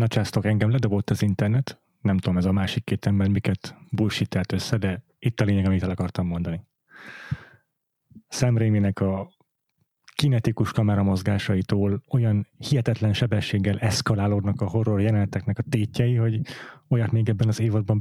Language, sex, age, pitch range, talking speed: Hungarian, male, 30-49, 100-120 Hz, 150 wpm